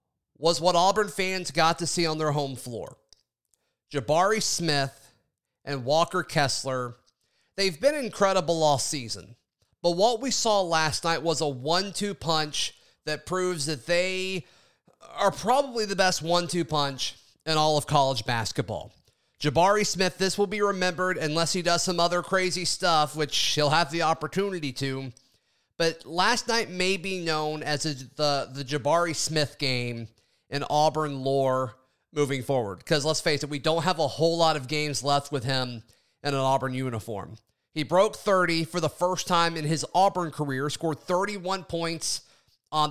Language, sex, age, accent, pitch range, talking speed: English, male, 30-49, American, 135-180 Hz, 165 wpm